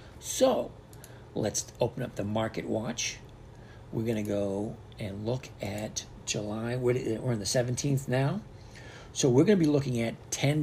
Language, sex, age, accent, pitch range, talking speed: English, male, 50-69, American, 110-130 Hz, 160 wpm